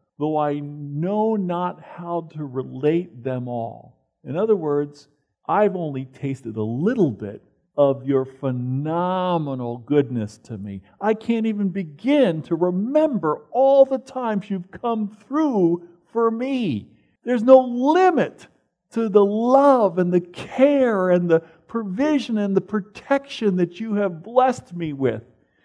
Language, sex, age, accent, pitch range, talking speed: English, male, 50-69, American, 145-230 Hz, 140 wpm